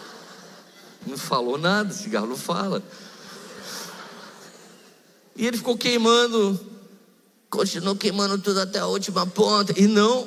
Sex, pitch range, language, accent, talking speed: male, 165-220 Hz, Portuguese, Brazilian, 110 wpm